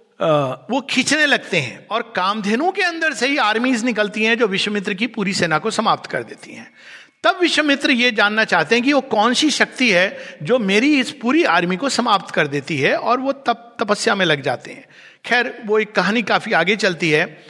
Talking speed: 215 wpm